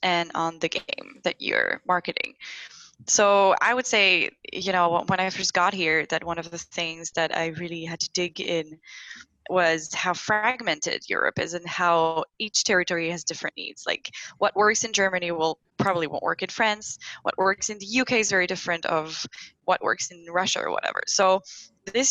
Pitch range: 165-195 Hz